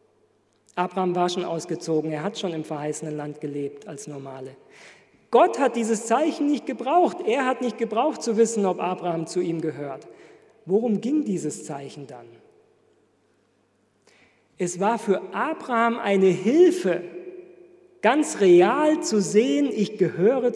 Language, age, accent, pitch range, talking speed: German, 40-59, German, 180-260 Hz, 135 wpm